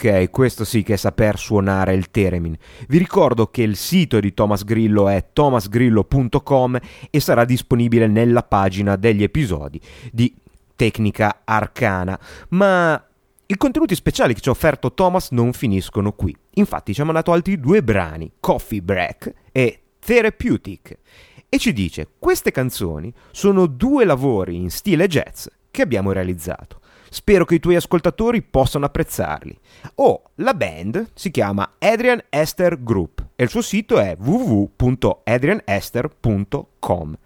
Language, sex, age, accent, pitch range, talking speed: Italian, male, 30-49, native, 100-155 Hz, 140 wpm